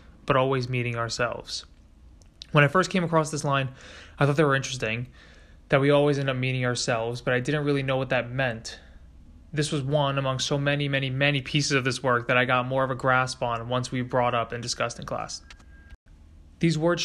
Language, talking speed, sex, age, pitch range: English, 215 wpm, male, 20-39, 120-145 Hz